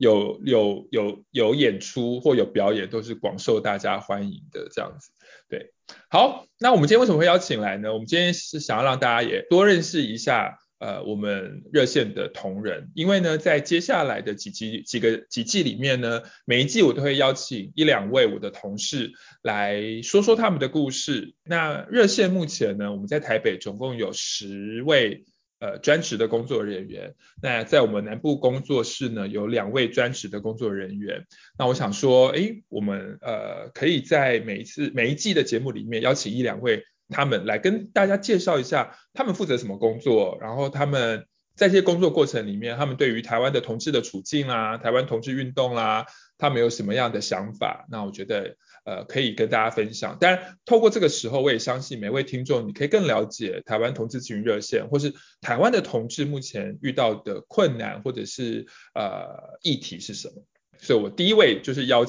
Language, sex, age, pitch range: Chinese, male, 20-39, 110-175 Hz